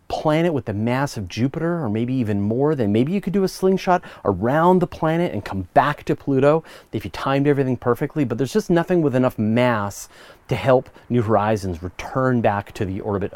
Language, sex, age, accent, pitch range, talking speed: English, male, 30-49, American, 105-150 Hz, 205 wpm